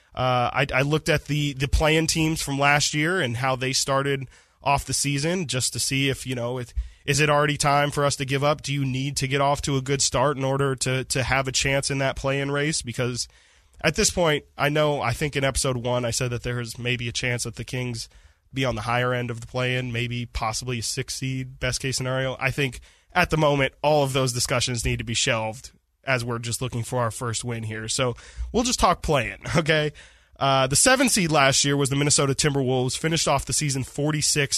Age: 20-39